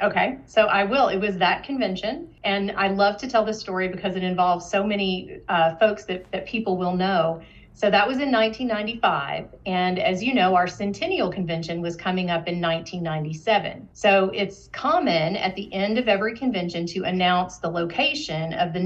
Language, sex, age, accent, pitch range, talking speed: English, female, 40-59, American, 180-215 Hz, 190 wpm